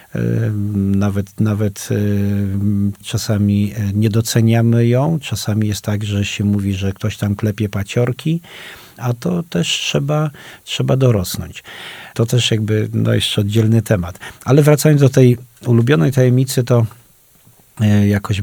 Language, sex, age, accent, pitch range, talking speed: Polish, male, 40-59, native, 100-115 Hz, 125 wpm